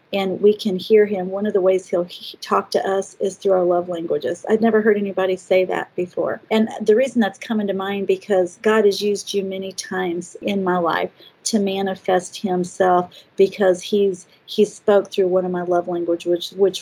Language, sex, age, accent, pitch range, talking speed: English, female, 40-59, American, 185-215 Hz, 205 wpm